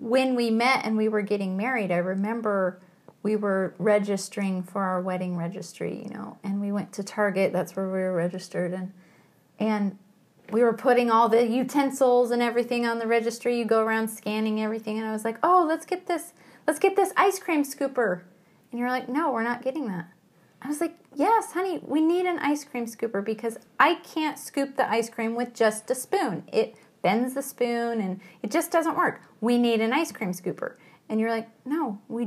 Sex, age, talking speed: female, 30-49, 205 wpm